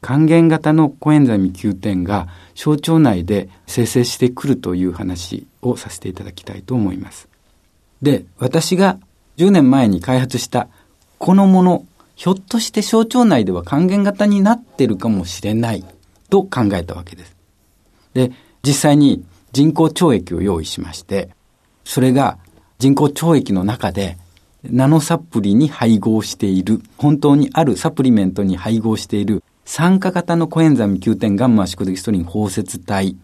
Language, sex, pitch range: Japanese, male, 95-150 Hz